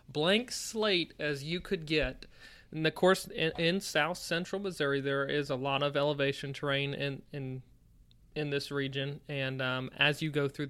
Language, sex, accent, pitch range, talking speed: English, male, American, 135-160 Hz, 180 wpm